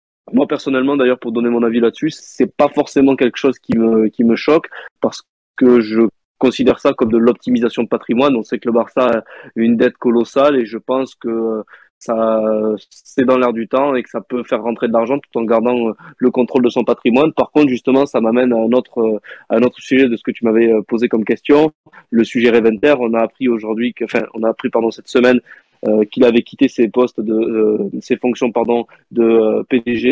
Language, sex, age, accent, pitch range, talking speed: French, male, 20-39, French, 115-130 Hz, 225 wpm